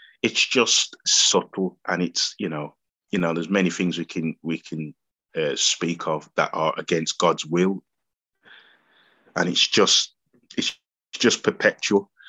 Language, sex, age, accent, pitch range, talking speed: English, male, 20-39, British, 85-95 Hz, 145 wpm